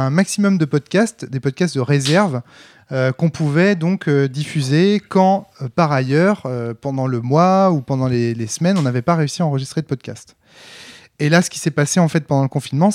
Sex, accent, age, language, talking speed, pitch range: male, French, 20-39, French, 210 wpm, 130-170 Hz